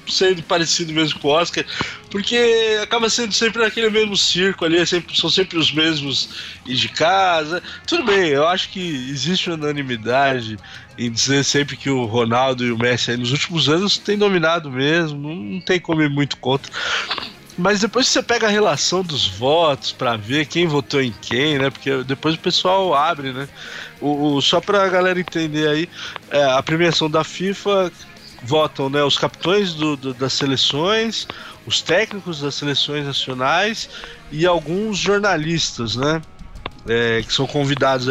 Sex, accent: male, Brazilian